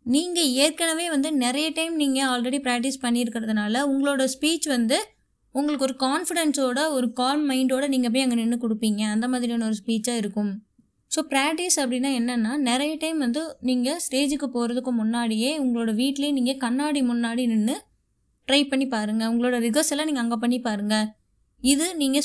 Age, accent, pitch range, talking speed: 20-39, native, 235-285 Hz, 150 wpm